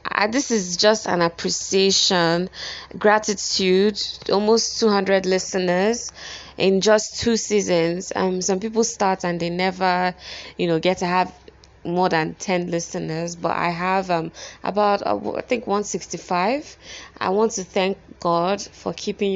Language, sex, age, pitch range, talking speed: English, female, 20-39, 175-205 Hz, 140 wpm